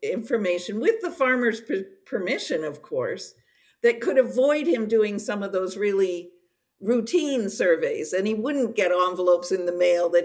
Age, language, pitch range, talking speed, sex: 50-69, English, 180-270 Hz, 160 wpm, female